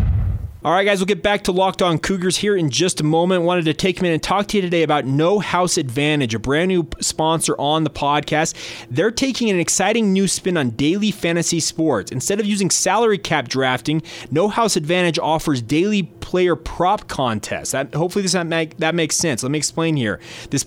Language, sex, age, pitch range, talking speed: English, male, 30-49, 145-185 Hz, 205 wpm